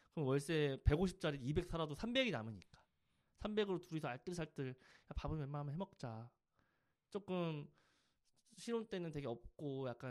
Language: Korean